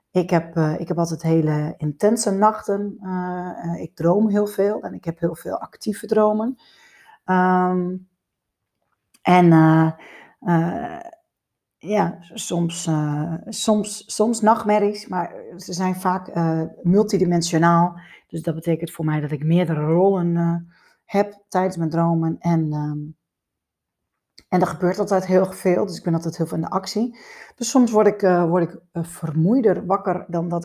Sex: female